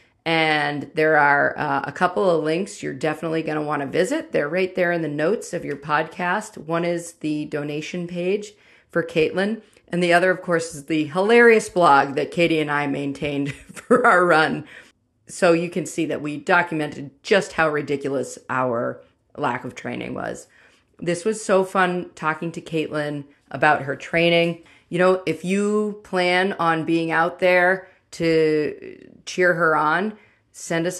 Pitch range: 150-185 Hz